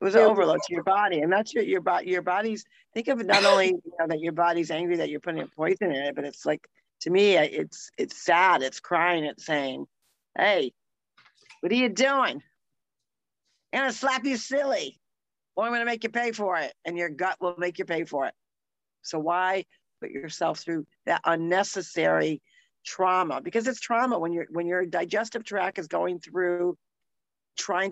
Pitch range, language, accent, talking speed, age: 160-205 Hz, English, American, 195 wpm, 50-69